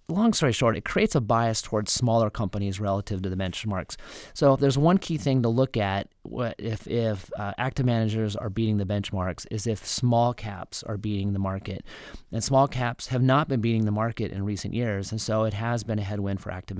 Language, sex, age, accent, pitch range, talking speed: English, male, 30-49, American, 105-125 Hz, 220 wpm